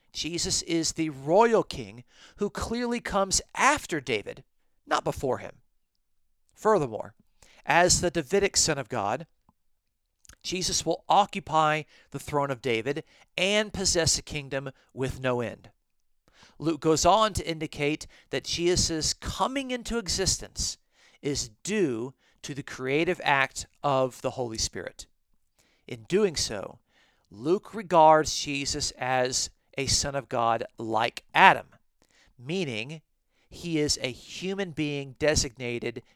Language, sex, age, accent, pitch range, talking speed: English, male, 50-69, American, 130-180 Hz, 125 wpm